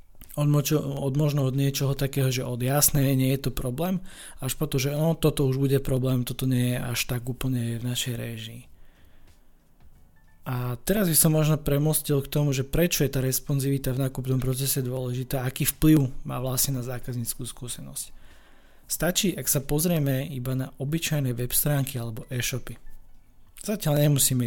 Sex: male